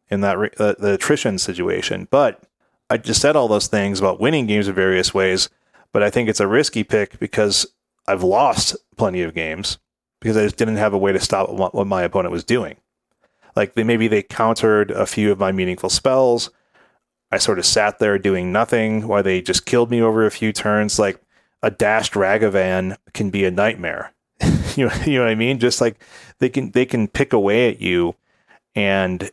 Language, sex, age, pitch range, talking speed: English, male, 30-49, 95-115 Hz, 205 wpm